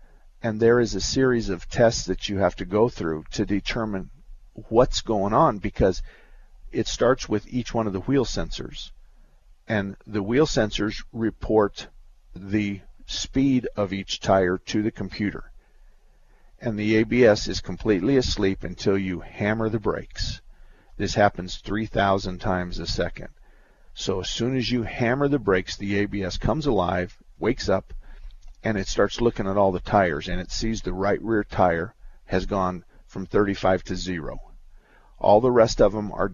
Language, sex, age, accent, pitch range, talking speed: English, male, 50-69, American, 95-115 Hz, 165 wpm